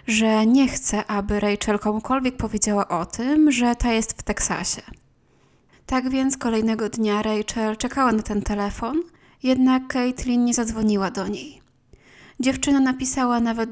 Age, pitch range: 20-39, 210-245 Hz